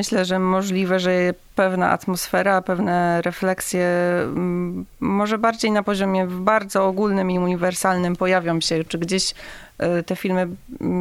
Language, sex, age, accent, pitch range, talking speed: Polish, female, 30-49, native, 175-195 Hz, 120 wpm